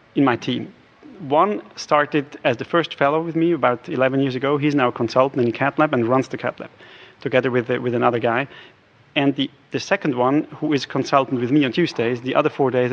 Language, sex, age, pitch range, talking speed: English, male, 30-49, 130-160 Hz, 220 wpm